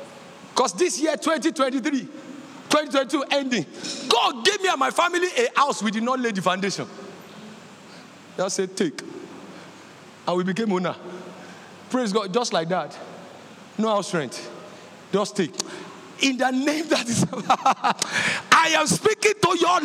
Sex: male